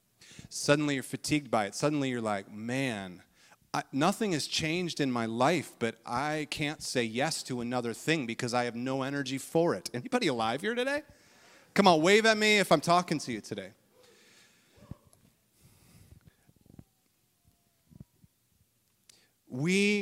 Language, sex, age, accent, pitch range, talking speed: English, male, 30-49, American, 145-220 Hz, 140 wpm